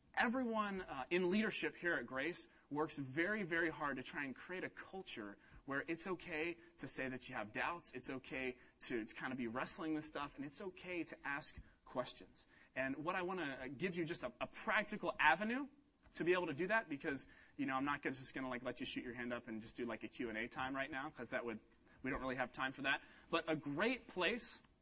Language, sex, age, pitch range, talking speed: English, male, 30-49, 135-190 Hz, 235 wpm